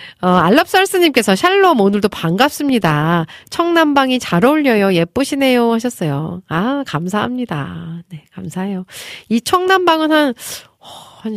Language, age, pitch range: Korean, 40-59, 165-275 Hz